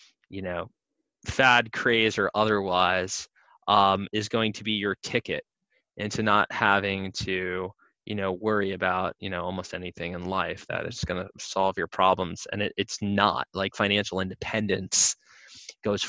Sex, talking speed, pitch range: male, 155 wpm, 95-110 Hz